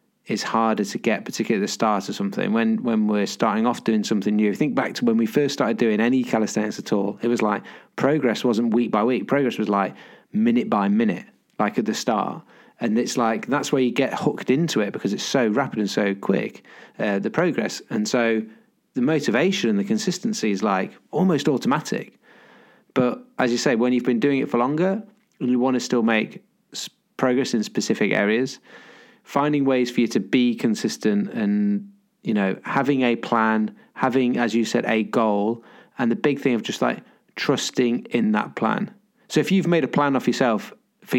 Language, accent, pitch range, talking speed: English, British, 115-195 Hz, 200 wpm